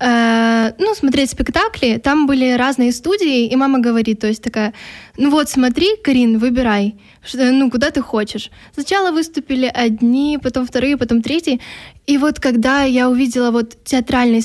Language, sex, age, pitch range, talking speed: Ukrainian, female, 10-29, 230-265 Hz, 150 wpm